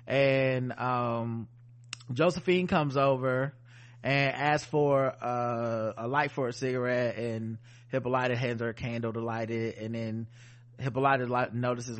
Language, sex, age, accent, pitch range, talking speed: English, male, 20-39, American, 115-135 Hz, 135 wpm